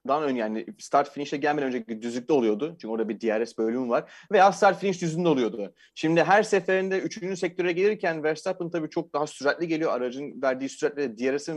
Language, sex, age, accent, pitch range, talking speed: Turkish, male, 40-59, native, 140-200 Hz, 170 wpm